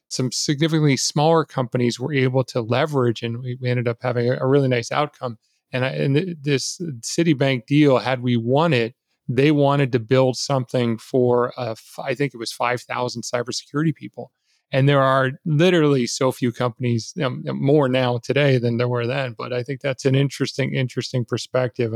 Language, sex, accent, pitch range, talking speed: English, male, American, 125-140 Hz, 165 wpm